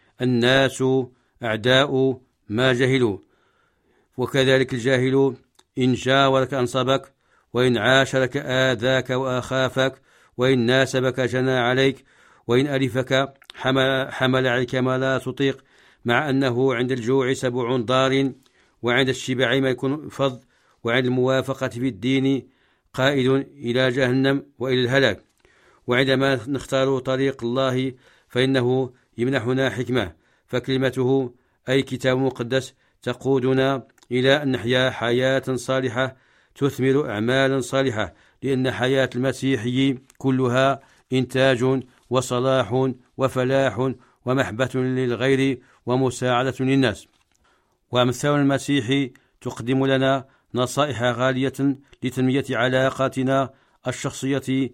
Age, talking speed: 60-79, 90 wpm